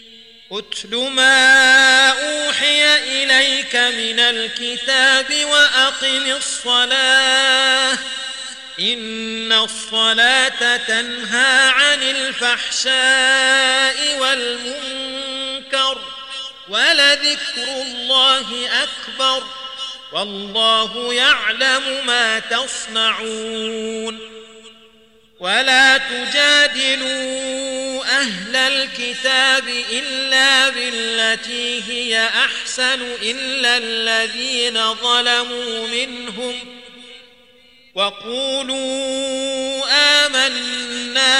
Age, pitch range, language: 40-59, 225-265 Hz, Arabic